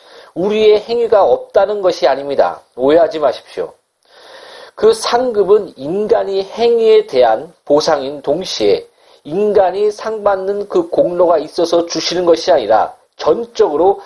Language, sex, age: Korean, male, 40-59